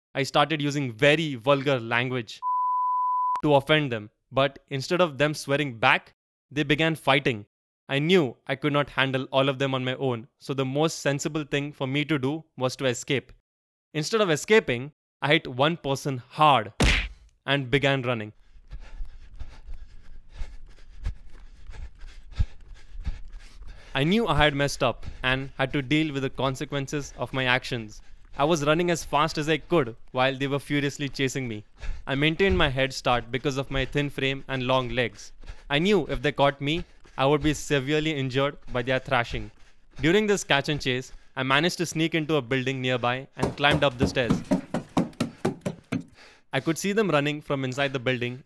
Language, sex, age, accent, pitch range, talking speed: English, male, 20-39, Indian, 120-150 Hz, 170 wpm